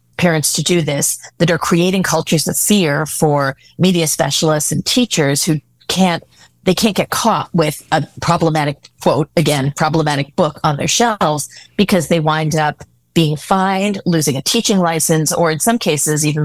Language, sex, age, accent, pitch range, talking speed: English, female, 40-59, American, 150-180 Hz, 170 wpm